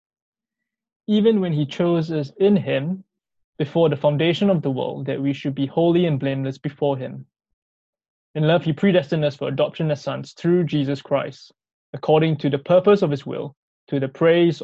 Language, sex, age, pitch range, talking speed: English, male, 20-39, 145-175 Hz, 180 wpm